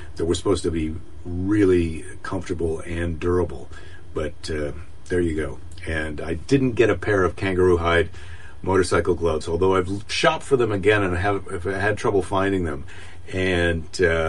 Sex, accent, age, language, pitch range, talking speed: male, American, 50-69, English, 85-100 Hz, 170 wpm